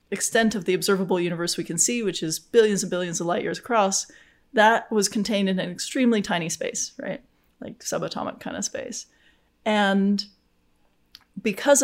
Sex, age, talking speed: female, 30-49, 165 wpm